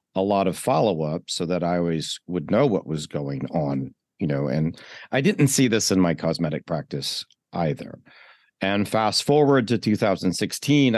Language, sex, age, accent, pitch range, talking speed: English, male, 40-59, American, 90-115 Hz, 170 wpm